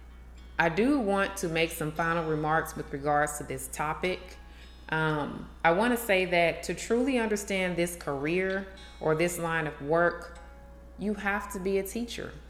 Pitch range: 155-195 Hz